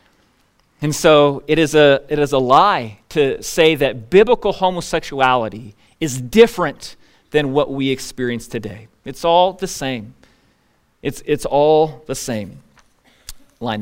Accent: American